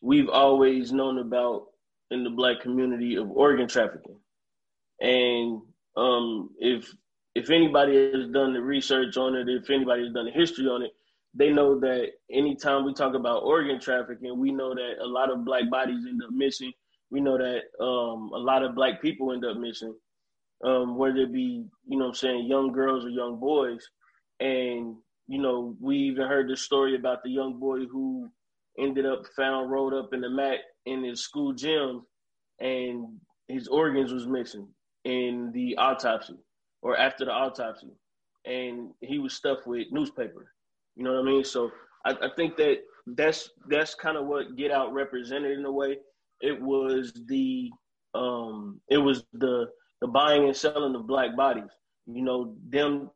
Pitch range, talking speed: 125-140 Hz, 175 wpm